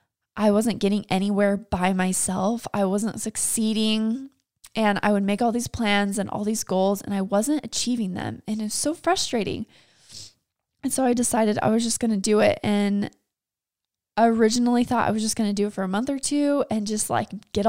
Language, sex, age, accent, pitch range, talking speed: English, female, 10-29, American, 195-235 Hz, 205 wpm